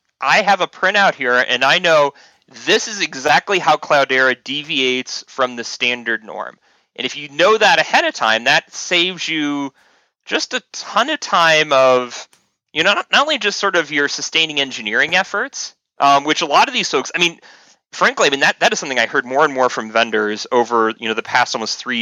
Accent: American